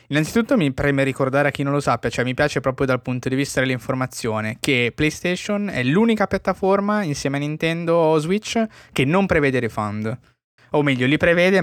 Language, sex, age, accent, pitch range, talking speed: Italian, male, 20-39, native, 120-150 Hz, 185 wpm